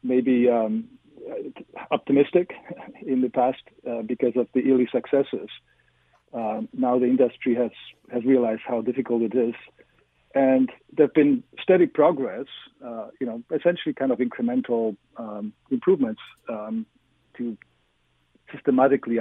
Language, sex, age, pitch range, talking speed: English, male, 50-69, 115-155 Hz, 130 wpm